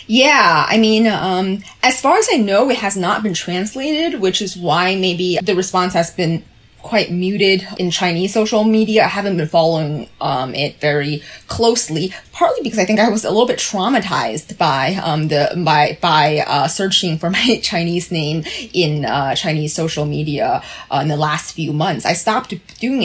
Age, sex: 20-39, female